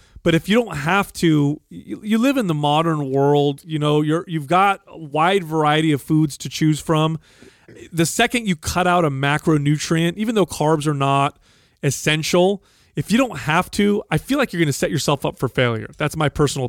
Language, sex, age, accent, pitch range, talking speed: English, male, 30-49, American, 140-170 Hz, 195 wpm